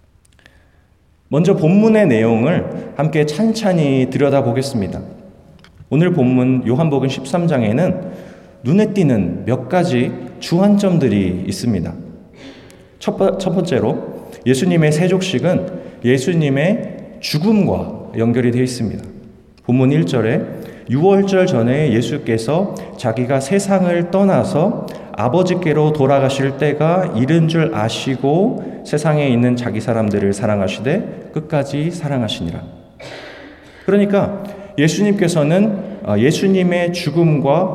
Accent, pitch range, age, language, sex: native, 125-190 Hz, 30-49, Korean, male